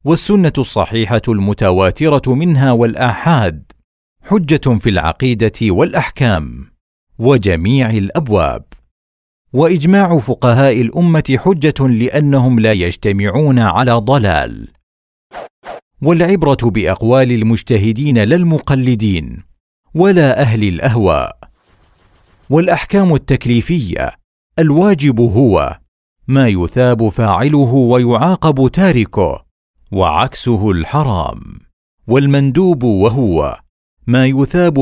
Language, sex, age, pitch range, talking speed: Arabic, male, 40-59, 100-140 Hz, 70 wpm